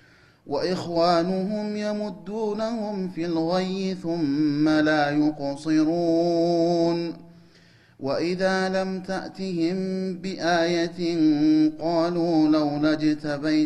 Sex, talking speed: male, 60 wpm